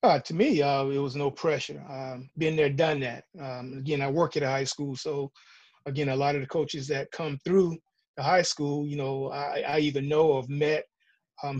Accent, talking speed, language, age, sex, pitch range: American, 220 wpm, English, 30-49, male, 140-160 Hz